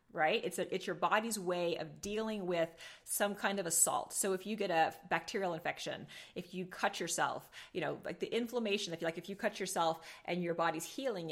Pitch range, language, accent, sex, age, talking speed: 165-200 Hz, English, American, female, 30-49, 215 wpm